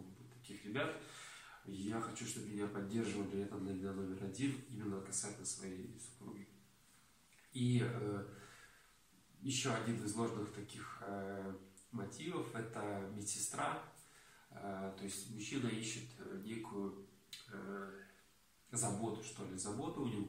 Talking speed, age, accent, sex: 110 wpm, 20-39, native, male